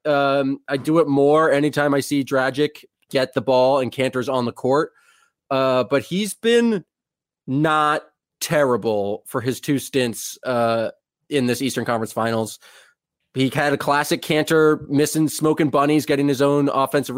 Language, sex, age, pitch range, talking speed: English, male, 20-39, 125-150 Hz, 155 wpm